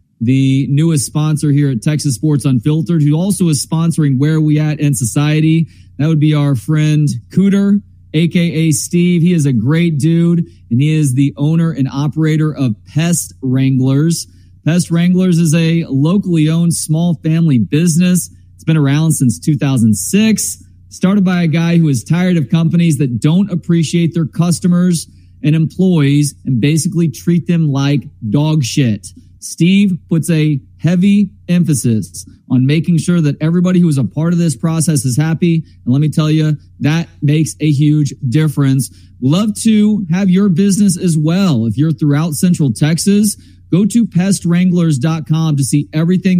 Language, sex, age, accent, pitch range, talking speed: English, male, 30-49, American, 140-170 Hz, 160 wpm